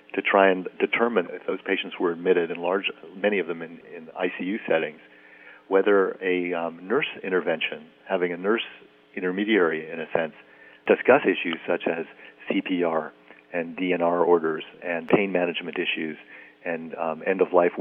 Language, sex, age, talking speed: English, male, 50-69, 150 wpm